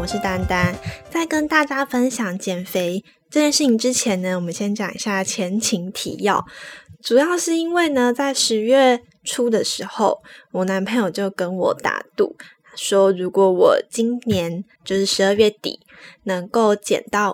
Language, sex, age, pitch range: Chinese, female, 10-29, 190-245 Hz